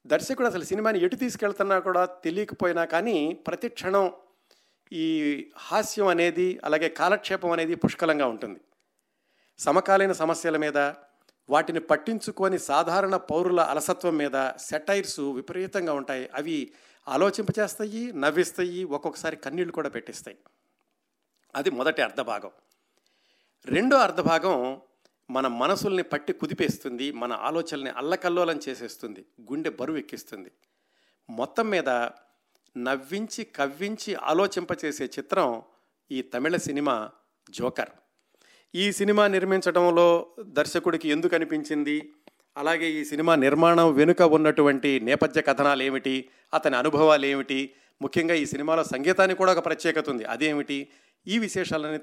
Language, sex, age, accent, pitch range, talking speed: Telugu, male, 50-69, native, 145-190 Hz, 105 wpm